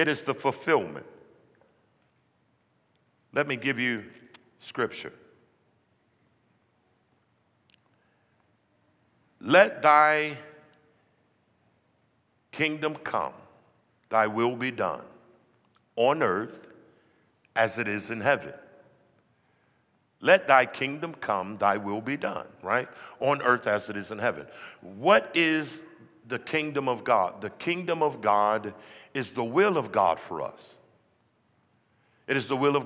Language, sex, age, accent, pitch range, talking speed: English, male, 60-79, American, 115-150 Hz, 115 wpm